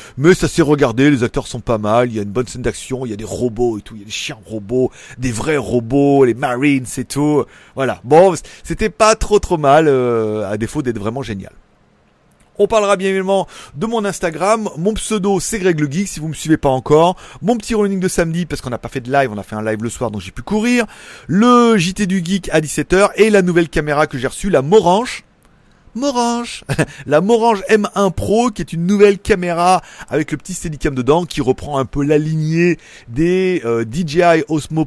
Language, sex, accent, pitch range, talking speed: French, male, French, 130-185 Hz, 225 wpm